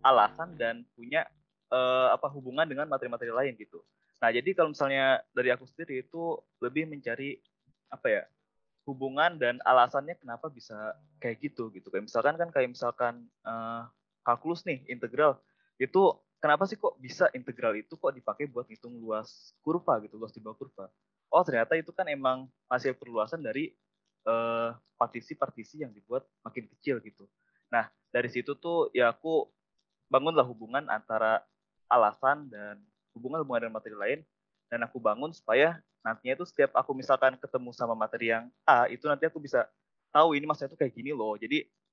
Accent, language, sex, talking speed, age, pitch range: native, Indonesian, male, 160 wpm, 20-39, 115-150 Hz